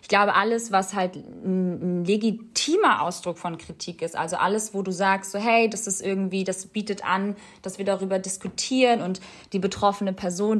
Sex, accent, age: female, German, 20-39